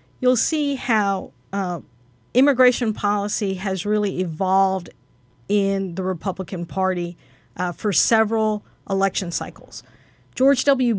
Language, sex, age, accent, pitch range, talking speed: English, female, 50-69, American, 185-220 Hz, 110 wpm